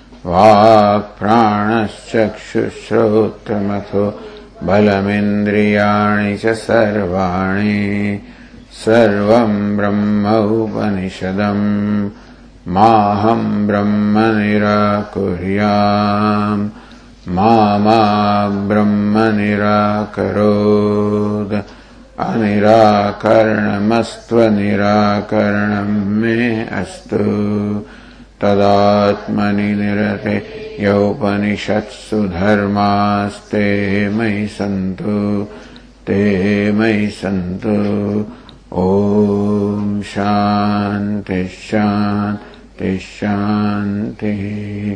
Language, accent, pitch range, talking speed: English, Indian, 100-105 Hz, 45 wpm